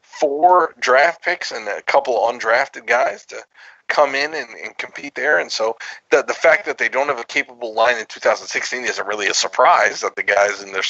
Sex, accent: male, American